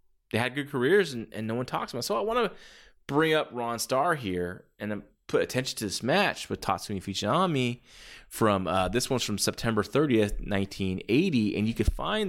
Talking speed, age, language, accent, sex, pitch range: 200 wpm, 20-39, English, American, male, 100-140 Hz